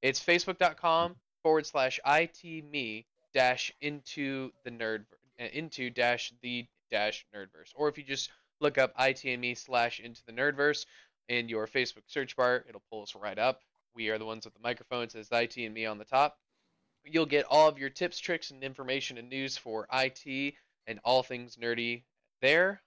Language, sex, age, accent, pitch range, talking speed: English, male, 20-39, American, 120-145 Hz, 180 wpm